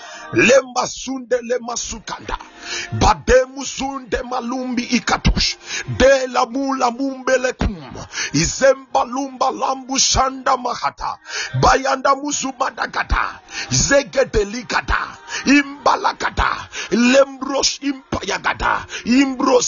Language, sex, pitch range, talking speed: English, male, 230-275 Hz, 75 wpm